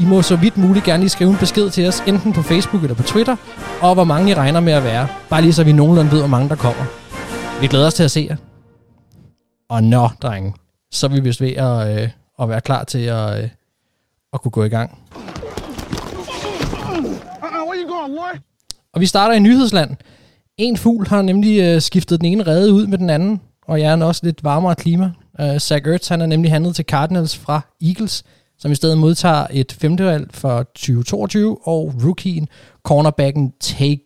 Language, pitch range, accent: Danish, 130-170 Hz, native